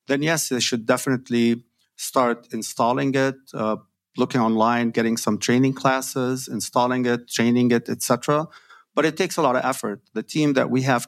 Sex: male